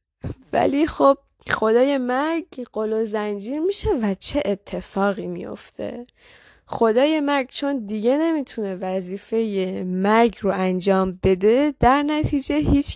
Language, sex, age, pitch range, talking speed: Persian, female, 10-29, 205-280 Hz, 120 wpm